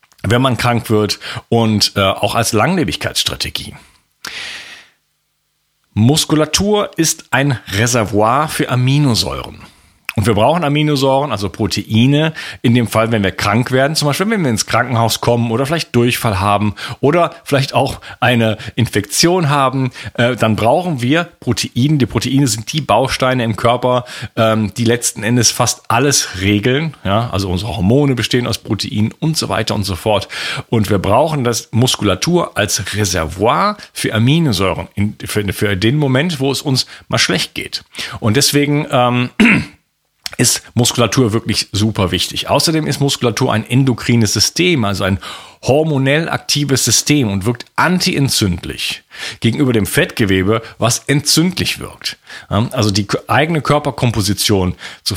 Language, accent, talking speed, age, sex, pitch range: German, German, 135 wpm, 40-59, male, 105-140 Hz